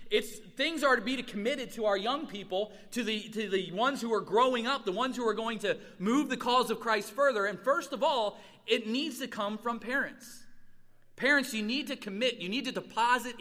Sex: male